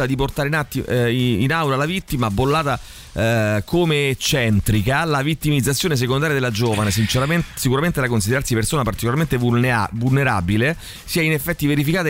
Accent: native